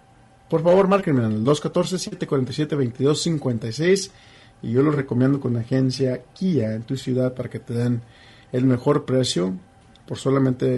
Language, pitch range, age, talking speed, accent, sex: English, 115-145 Hz, 40-59, 145 wpm, Mexican, male